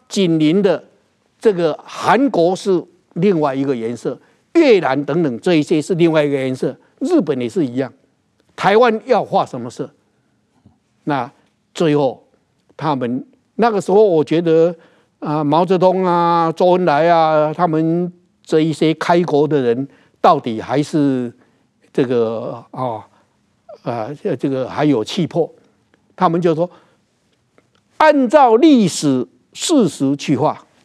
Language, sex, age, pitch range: Chinese, male, 60-79, 155-235 Hz